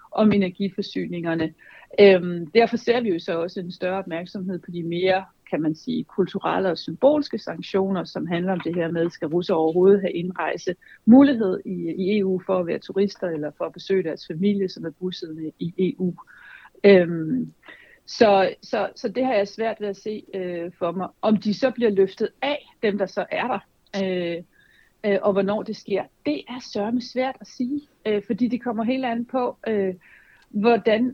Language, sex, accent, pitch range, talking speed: Danish, female, native, 180-225 Hz, 185 wpm